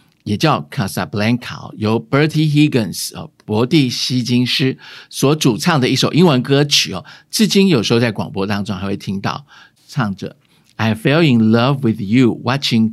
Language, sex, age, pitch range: Chinese, male, 50-69, 110-140 Hz